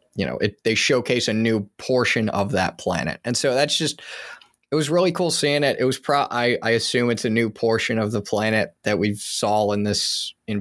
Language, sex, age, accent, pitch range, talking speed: English, male, 20-39, American, 105-135 Hz, 225 wpm